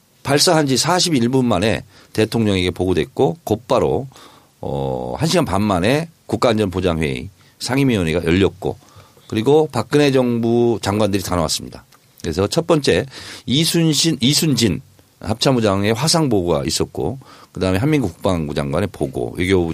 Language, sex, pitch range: Korean, male, 90-135 Hz